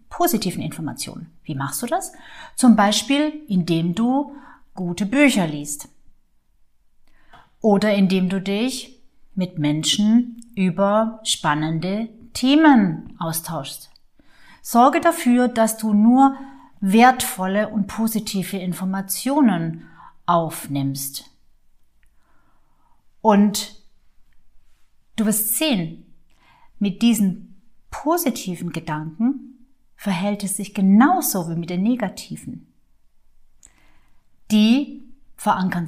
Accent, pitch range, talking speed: German, 180-250 Hz, 85 wpm